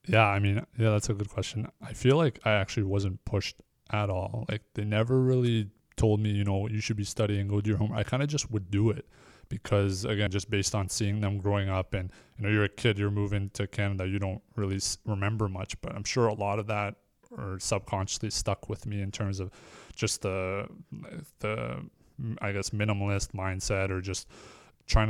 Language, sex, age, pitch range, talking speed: English, male, 20-39, 100-110 Hz, 215 wpm